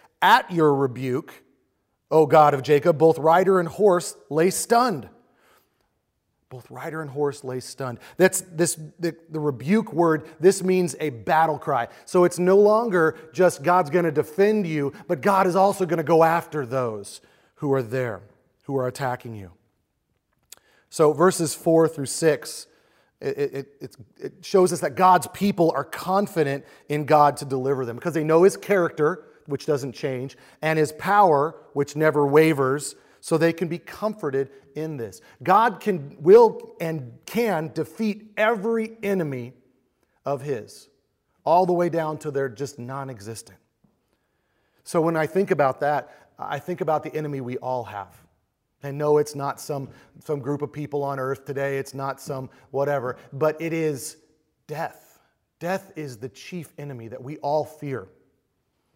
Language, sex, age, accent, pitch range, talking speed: English, male, 30-49, American, 135-175 Hz, 160 wpm